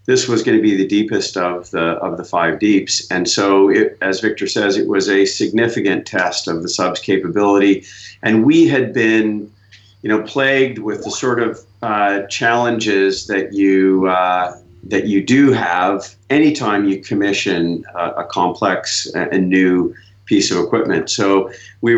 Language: English